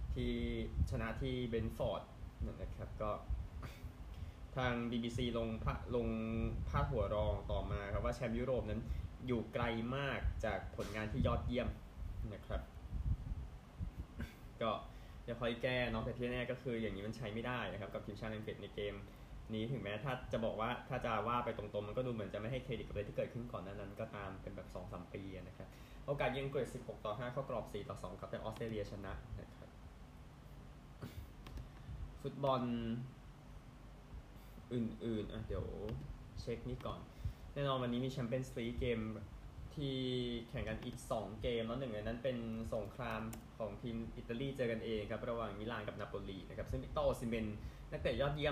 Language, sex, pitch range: Thai, male, 105-125 Hz